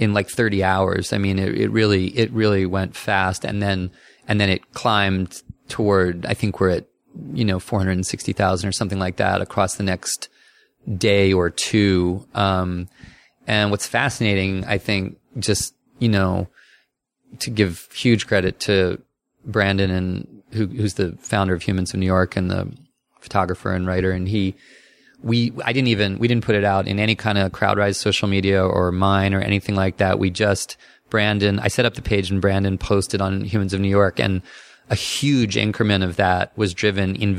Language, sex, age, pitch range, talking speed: English, male, 30-49, 95-105 Hz, 190 wpm